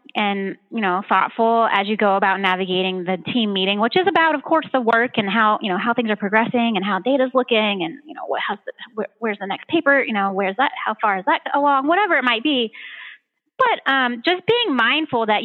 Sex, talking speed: female, 225 wpm